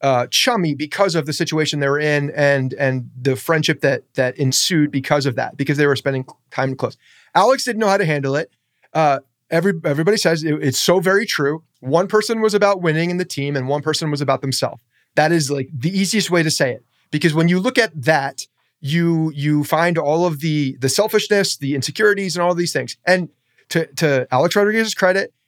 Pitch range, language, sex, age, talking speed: 140-170 Hz, English, male, 30-49, 215 wpm